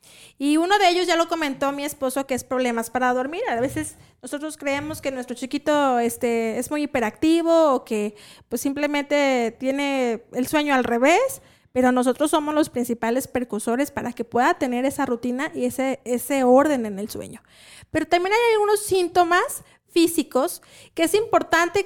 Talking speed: 170 wpm